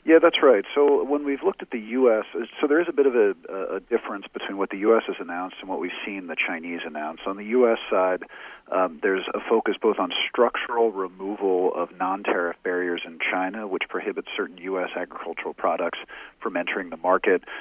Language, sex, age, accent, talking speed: English, male, 40-59, American, 200 wpm